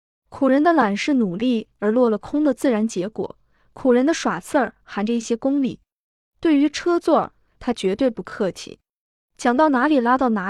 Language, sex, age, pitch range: Chinese, female, 20-39, 215-270 Hz